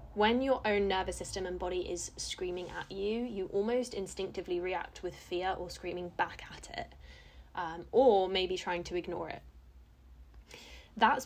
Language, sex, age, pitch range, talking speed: English, female, 20-39, 175-210 Hz, 160 wpm